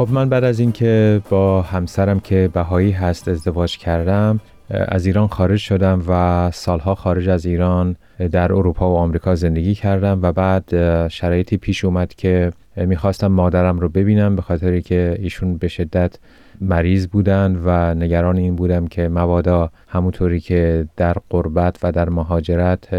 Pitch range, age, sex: 85-95 Hz, 30-49, male